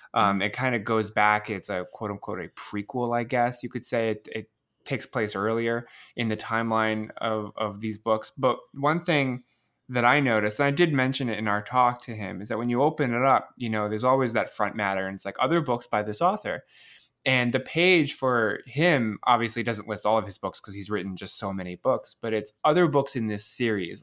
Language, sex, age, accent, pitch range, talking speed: English, male, 20-39, American, 110-135 Hz, 230 wpm